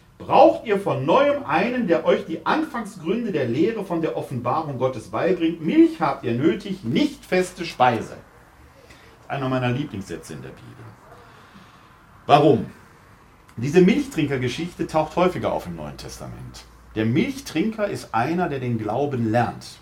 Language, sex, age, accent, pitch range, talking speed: German, male, 40-59, German, 125-190 Hz, 140 wpm